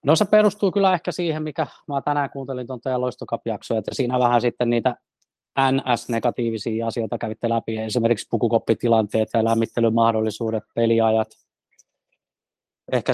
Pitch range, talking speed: 115-130 Hz, 130 wpm